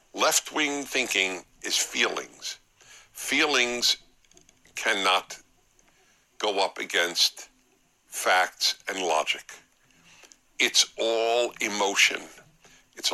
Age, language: 60-79, English